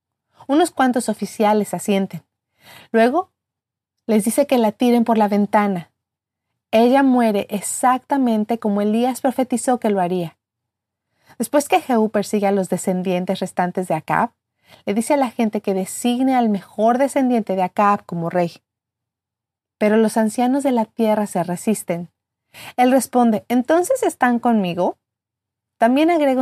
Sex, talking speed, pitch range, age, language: female, 140 wpm, 180-245 Hz, 30-49, Spanish